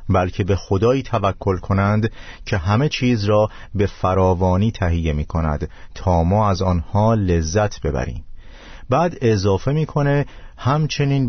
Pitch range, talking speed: 90-115 Hz, 130 wpm